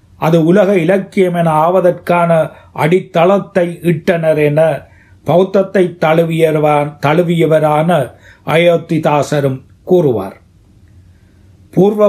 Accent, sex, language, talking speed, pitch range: native, male, Tamil, 70 wpm, 135-180 Hz